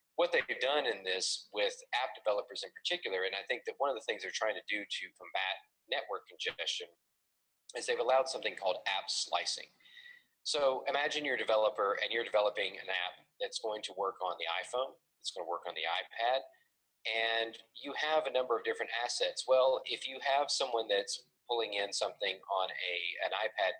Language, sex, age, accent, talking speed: English, male, 40-59, American, 195 wpm